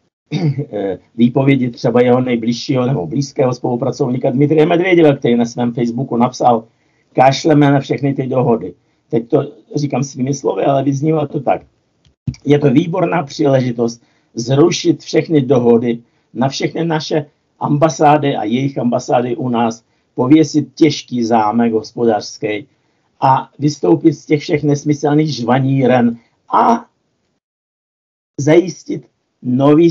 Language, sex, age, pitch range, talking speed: Slovak, male, 50-69, 120-155 Hz, 115 wpm